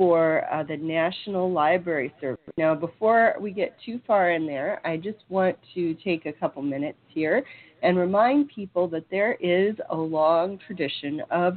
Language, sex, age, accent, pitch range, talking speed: English, female, 40-59, American, 150-190 Hz, 170 wpm